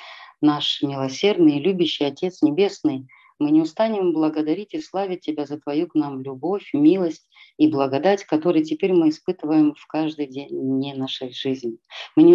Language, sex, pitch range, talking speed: Russian, female, 145-185 Hz, 150 wpm